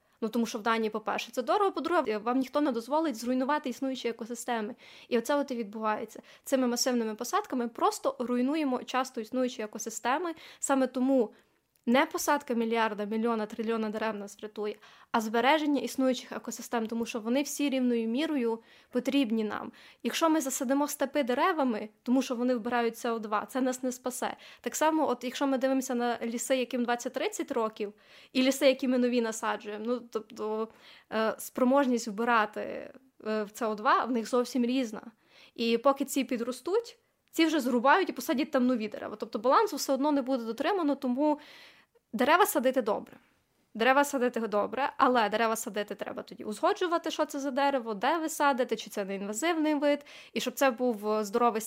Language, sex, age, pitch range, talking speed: Ukrainian, female, 20-39, 230-280 Hz, 165 wpm